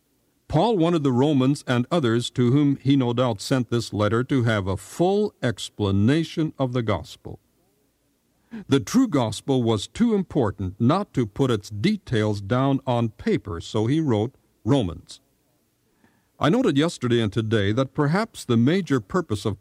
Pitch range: 110-155 Hz